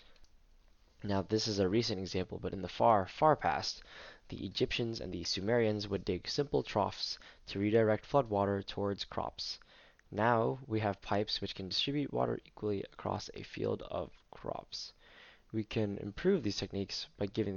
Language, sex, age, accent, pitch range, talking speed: English, male, 20-39, American, 95-115 Hz, 165 wpm